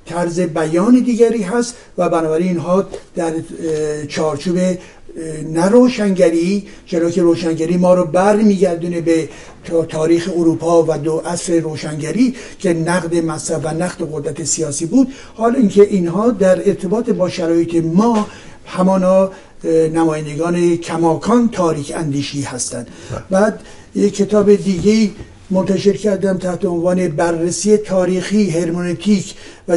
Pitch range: 165-200 Hz